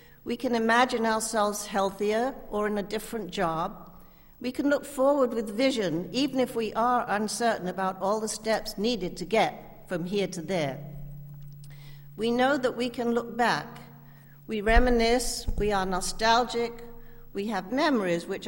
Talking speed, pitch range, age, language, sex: 155 wpm, 170-235 Hz, 60-79, English, female